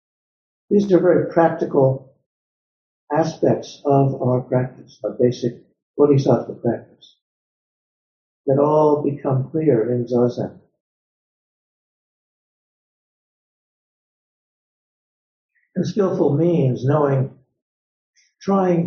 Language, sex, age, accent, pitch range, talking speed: English, male, 60-79, American, 125-170 Hz, 75 wpm